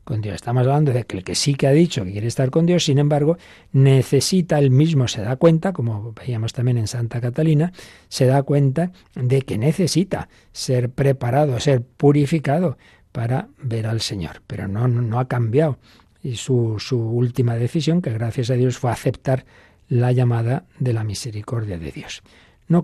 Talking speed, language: 175 wpm, Spanish